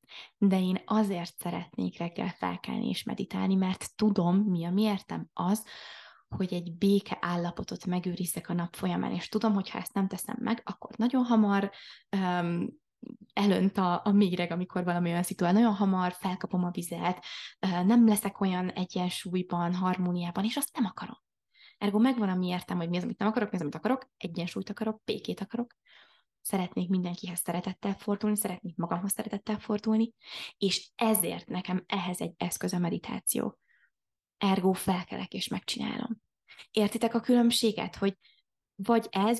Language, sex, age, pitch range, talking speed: Hungarian, female, 20-39, 180-215 Hz, 155 wpm